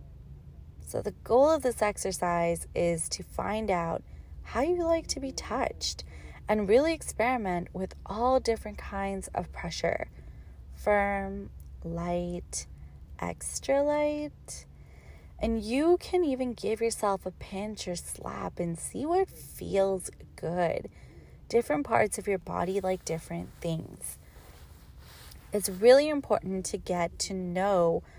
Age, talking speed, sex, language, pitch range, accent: 20-39, 125 wpm, female, English, 160-225 Hz, American